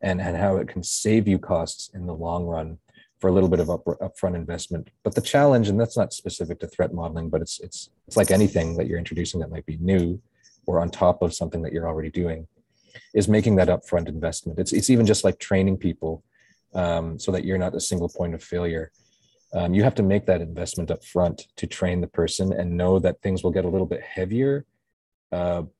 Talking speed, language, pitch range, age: 225 wpm, English, 85-100 Hz, 30-49